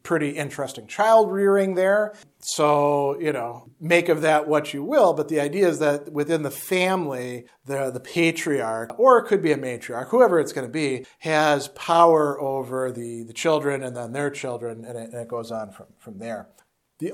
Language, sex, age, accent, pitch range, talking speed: English, male, 40-59, American, 135-165 Hz, 195 wpm